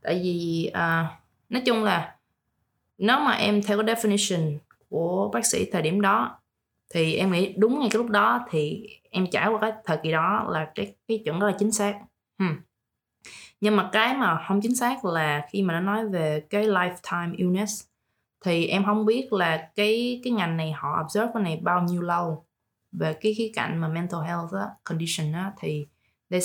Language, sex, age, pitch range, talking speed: English, female, 20-39, 160-205 Hz, 195 wpm